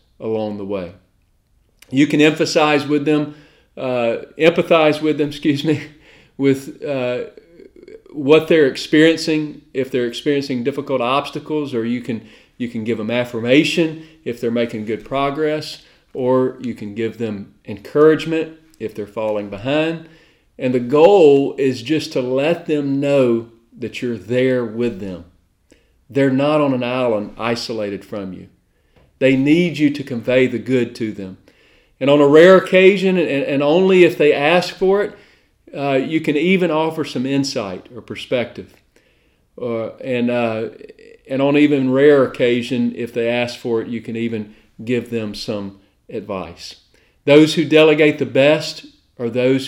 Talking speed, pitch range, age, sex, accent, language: 150 wpm, 115-155 Hz, 40-59, male, American, English